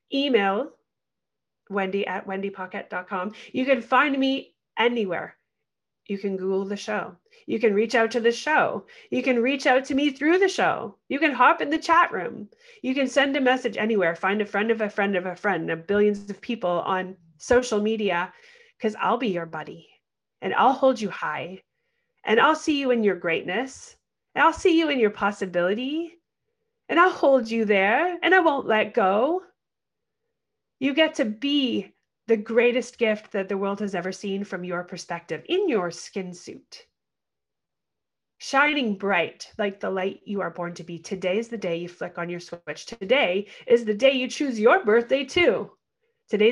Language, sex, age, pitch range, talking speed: English, female, 30-49, 185-270 Hz, 180 wpm